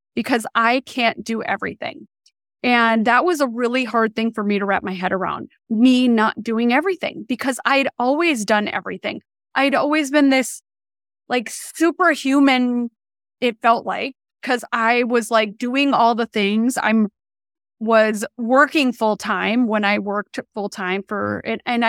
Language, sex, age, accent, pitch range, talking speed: English, female, 20-39, American, 215-260 Hz, 155 wpm